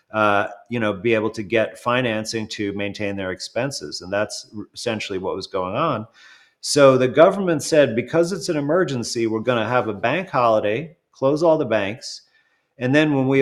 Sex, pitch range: male, 110-140 Hz